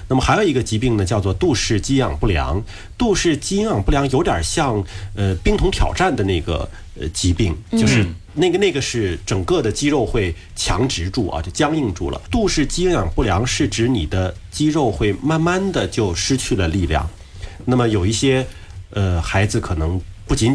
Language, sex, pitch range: Chinese, male, 90-115 Hz